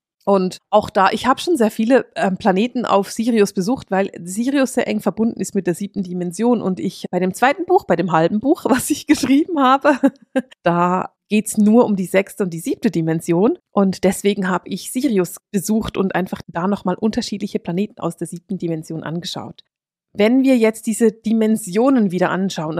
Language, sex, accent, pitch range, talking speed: German, female, German, 185-230 Hz, 185 wpm